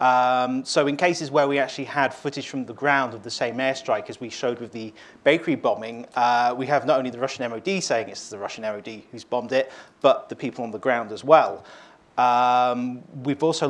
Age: 30-49